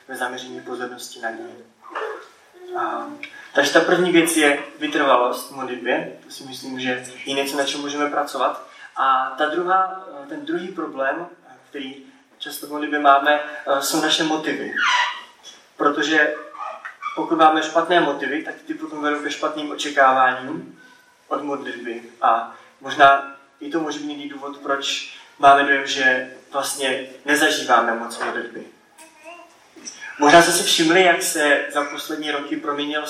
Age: 20-39